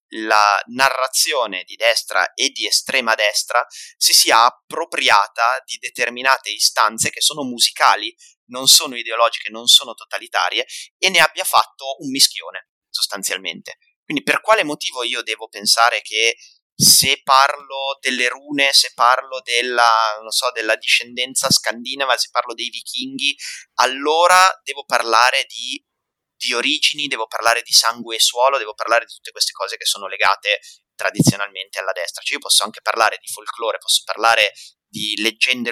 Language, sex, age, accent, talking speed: Italian, male, 30-49, native, 150 wpm